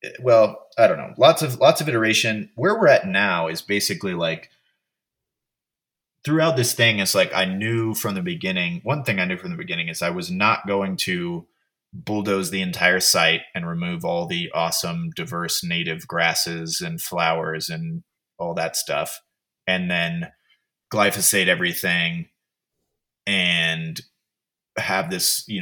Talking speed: 150 wpm